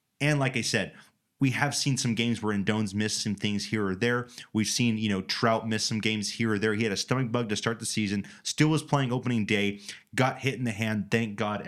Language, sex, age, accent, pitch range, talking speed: English, male, 30-49, American, 100-120 Hz, 250 wpm